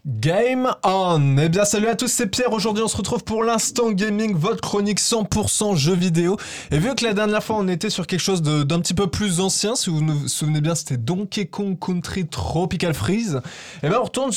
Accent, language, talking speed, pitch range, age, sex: French, French, 220 wpm, 150-210 Hz, 20-39, male